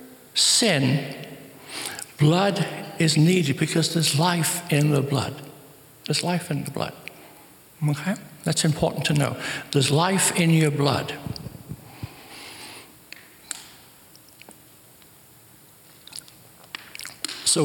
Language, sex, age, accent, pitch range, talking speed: English, male, 60-79, American, 140-170 Hz, 90 wpm